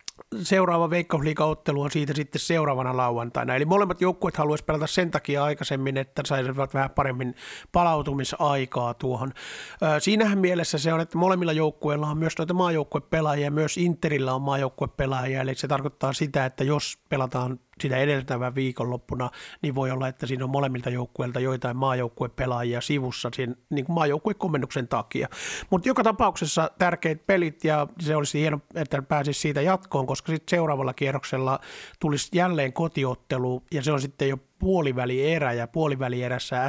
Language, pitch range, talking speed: Finnish, 130-160 Hz, 150 wpm